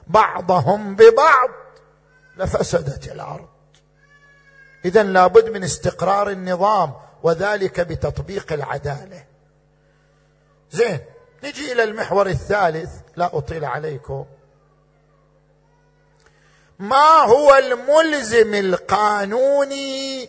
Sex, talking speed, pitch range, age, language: male, 70 wpm, 155-245 Hz, 50-69, Arabic